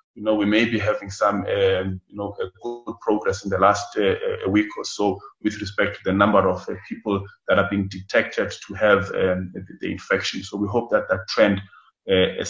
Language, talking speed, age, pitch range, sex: English, 220 wpm, 20-39, 95-110 Hz, male